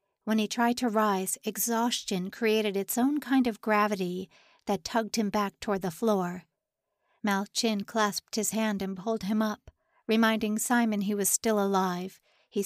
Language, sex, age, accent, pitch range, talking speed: English, female, 50-69, American, 195-235 Hz, 160 wpm